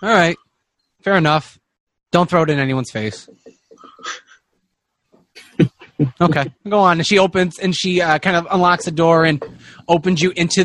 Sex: male